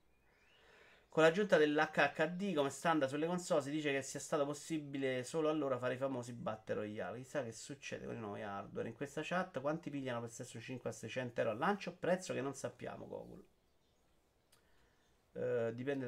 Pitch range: 130-155 Hz